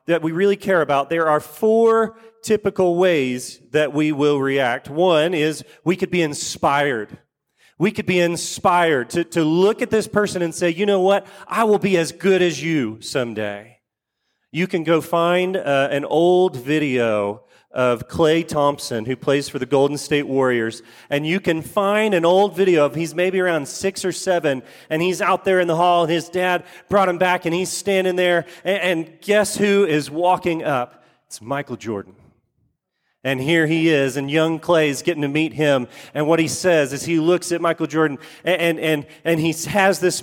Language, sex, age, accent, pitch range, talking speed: English, male, 30-49, American, 140-185 Hz, 190 wpm